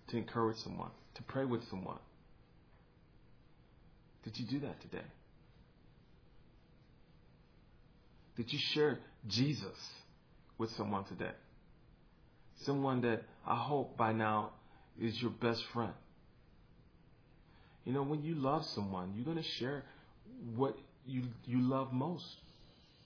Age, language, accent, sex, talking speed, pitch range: 40-59, English, American, male, 115 wpm, 110-130 Hz